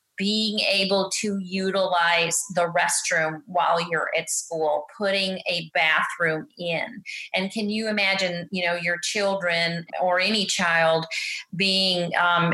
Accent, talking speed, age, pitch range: American, 130 wpm, 30-49, 165-210 Hz